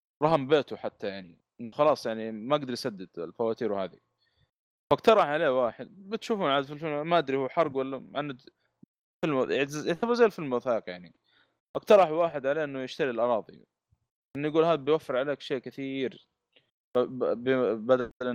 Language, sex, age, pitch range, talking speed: Arabic, male, 20-39, 105-140 Hz, 145 wpm